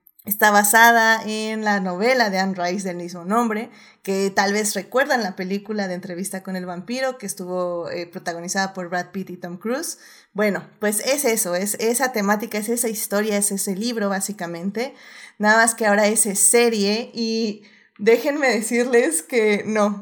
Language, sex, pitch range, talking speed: Spanish, female, 205-250 Hz, 170 wpm